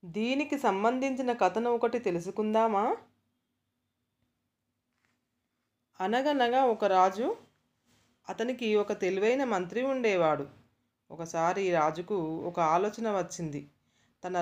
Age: 30-49